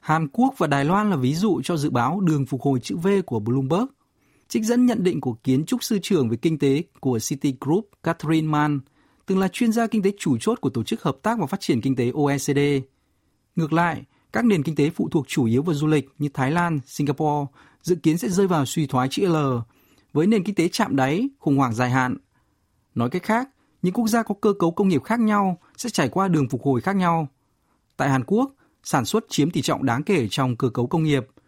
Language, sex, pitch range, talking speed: Vietnamese, male, 130-190 Hz, 240 wpm